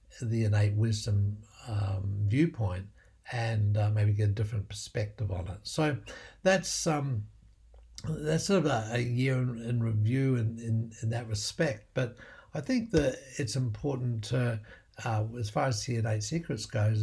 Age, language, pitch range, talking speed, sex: 60-79, English, 105-130 Hz, 160 wpm, male